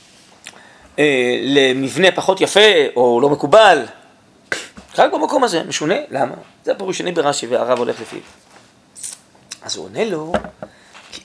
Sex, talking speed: male, 115 wpm